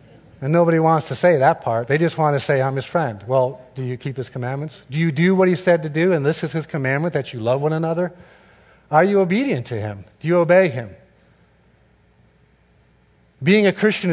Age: 50-69